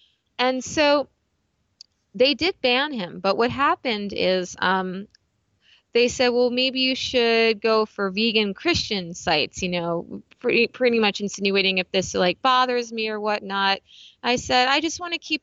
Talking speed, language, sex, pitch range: 165 wpm, English, female, 185-245 Hz